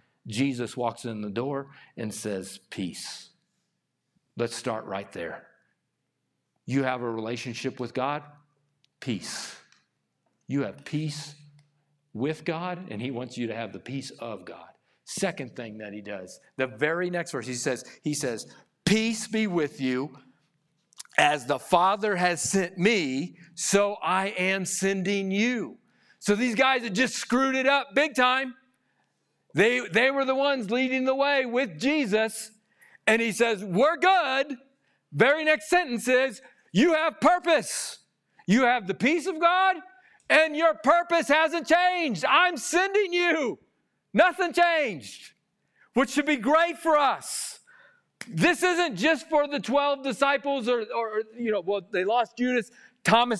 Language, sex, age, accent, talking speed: English, male, 50-69, American, 150 wpm